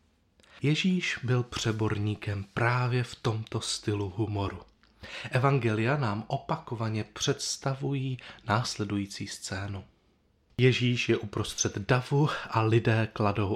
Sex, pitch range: male, 110-140 Hz